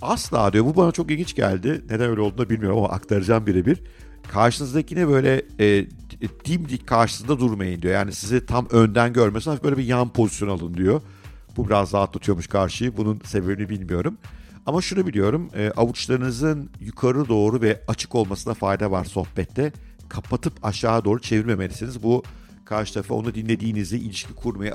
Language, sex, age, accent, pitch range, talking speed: Turkish, male, 50-69, native, 100-125 Hz, 160 wpm